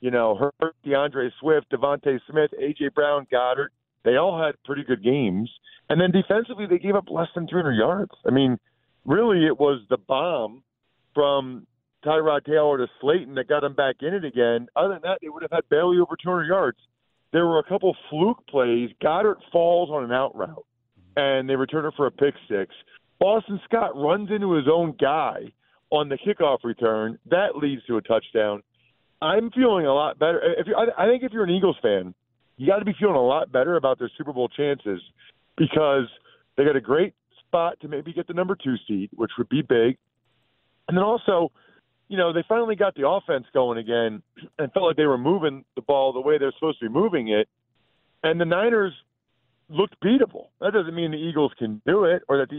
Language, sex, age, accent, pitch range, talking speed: English, male, 50-69, American, 125-175 Hz, 205 wpm